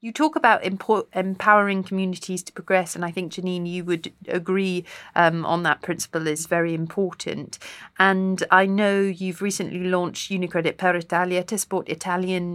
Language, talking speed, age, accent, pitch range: English, 160 wpm, 40-59, British, 170-205 Hz